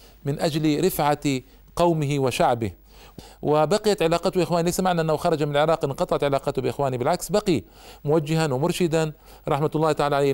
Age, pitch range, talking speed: 50-69, 140-175 Hz, 140 wpm